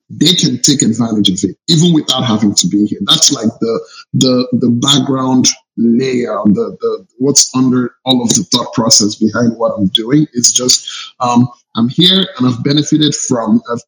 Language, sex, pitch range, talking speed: English, male, 120-150 Hz, 180 wpm